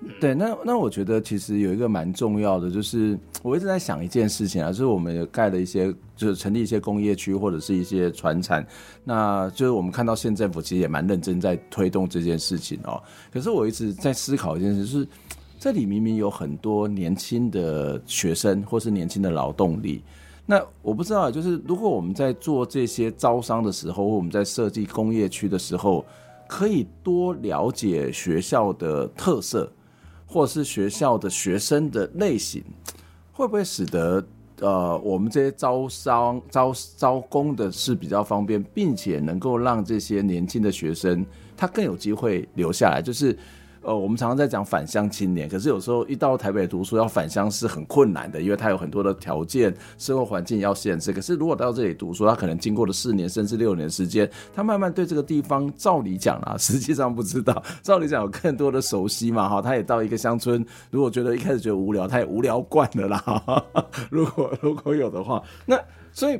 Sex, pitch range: male, 95-125 Hz